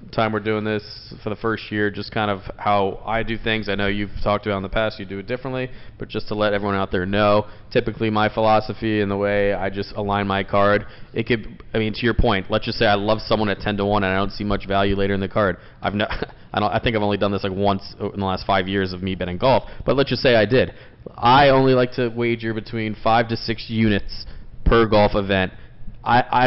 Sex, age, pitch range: male, 20-39, 105-120 Hz